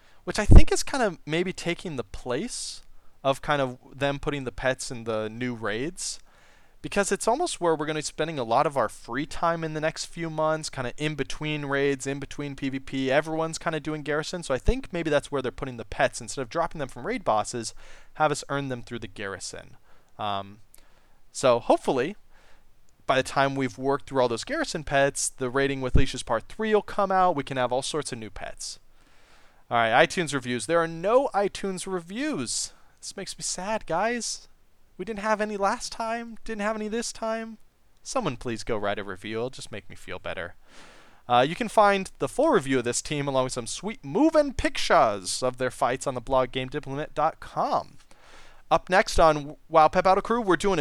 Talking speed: 210 wpm